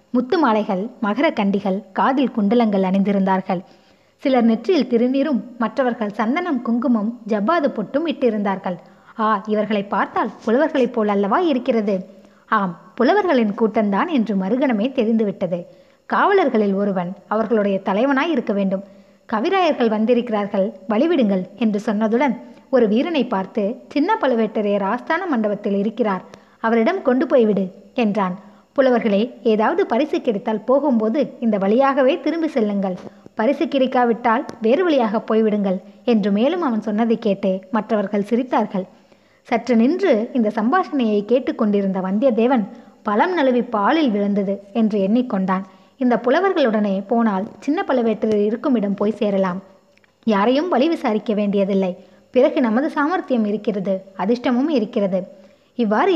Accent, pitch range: native, 200-260 Hz